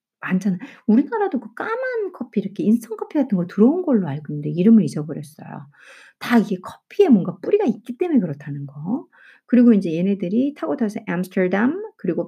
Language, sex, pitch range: Korean, female, 185-250 Hz